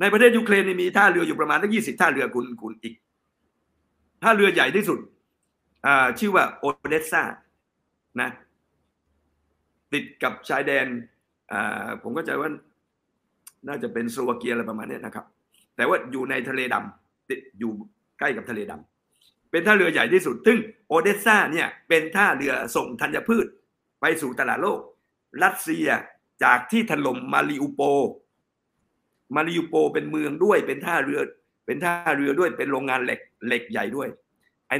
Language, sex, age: Thai, male, 60-79